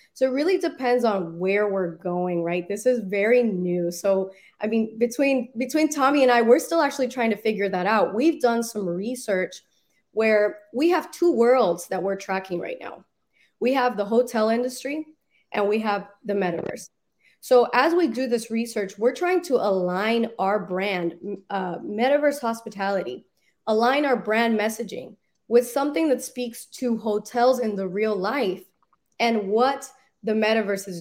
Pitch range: 195-245 Hz